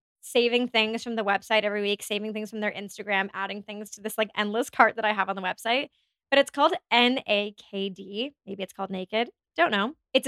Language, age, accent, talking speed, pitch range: English, 20-39, American, 230 wpm, 205-265 Hz